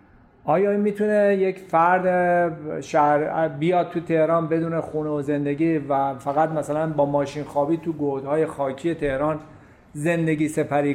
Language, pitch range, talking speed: Persian, 140-175 Hz, 125 wpm